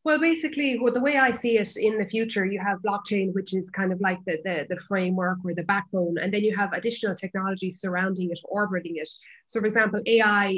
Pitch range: 185-215 Hz